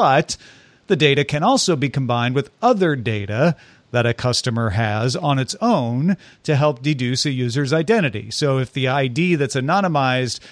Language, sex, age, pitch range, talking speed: English, male, 40-59, 130-160 Hz, 165 wpm